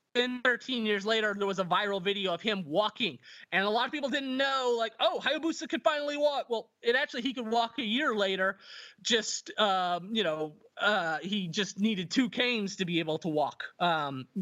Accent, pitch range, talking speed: American, 200-245 Hz, 210 wpm